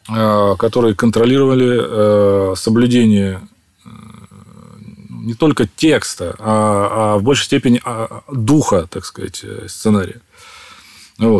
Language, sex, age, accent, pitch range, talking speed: Russian, male, 30-49, native, 100-125 Hz, 80 wpm